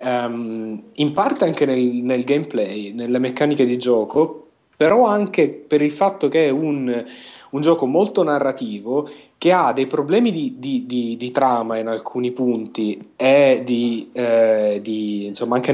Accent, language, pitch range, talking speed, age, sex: native, Italian, 125-155 Hz, 155 wpm, 30-49, male